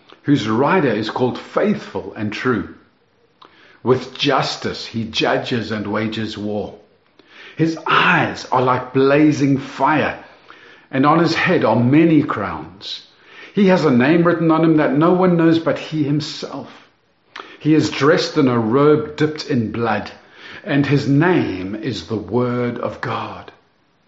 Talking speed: 145 wpm